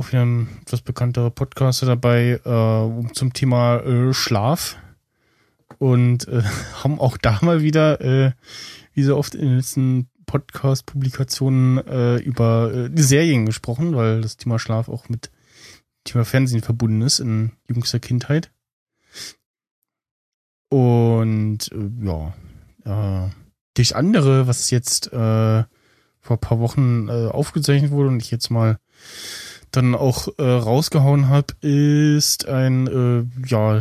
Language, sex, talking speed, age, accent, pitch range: German, male, 130 wpm, 20-39, German, 115-135 Hz